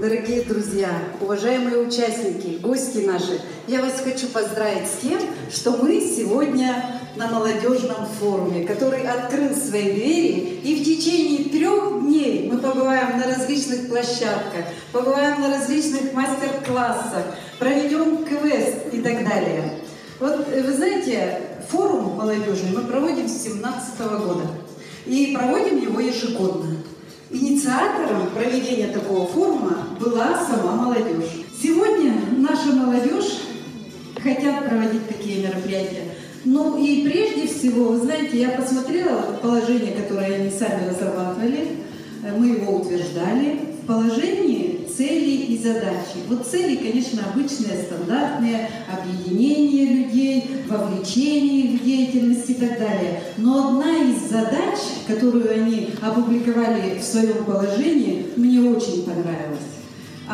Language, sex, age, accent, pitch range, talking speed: Russian, female, 40-59, native, 205-270 Hz, 115 wpm